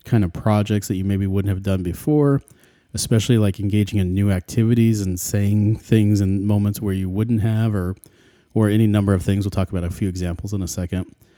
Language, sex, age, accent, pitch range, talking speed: English, male, 40-59, American, 95-115 Hz, 210 wpm